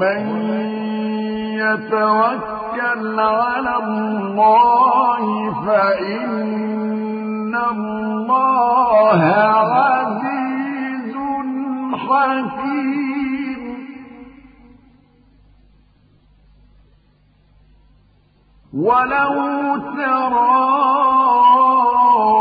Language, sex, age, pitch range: Arabic, male, 50-69, 215-260 Hz